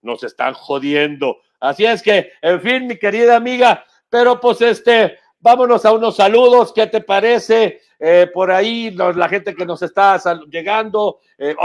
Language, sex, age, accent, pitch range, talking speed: English, male, 50-69, Mexican, 170-225 Hz, 170 wpm